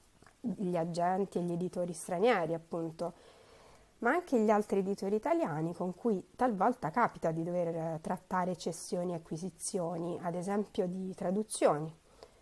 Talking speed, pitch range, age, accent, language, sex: 130 wpm, 170-205 Hz, 30-49, native, Italian, female